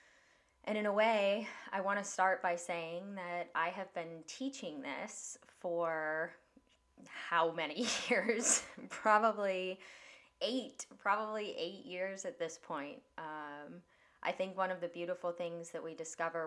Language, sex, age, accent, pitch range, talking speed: English, female, 20-39, American, 155-180 Hz, 140 wpm